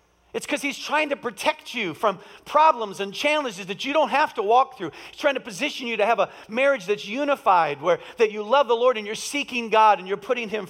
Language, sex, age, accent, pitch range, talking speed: English, male, 50-69, American, 165-260 Hz, 240 wpm